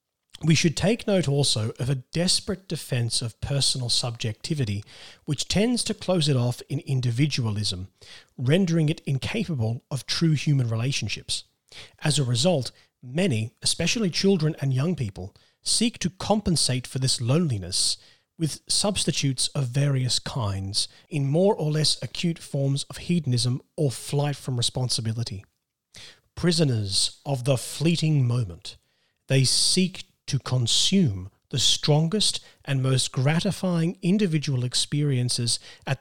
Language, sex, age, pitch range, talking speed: English, male, 40-59, 120-160 Hz, 130 wpm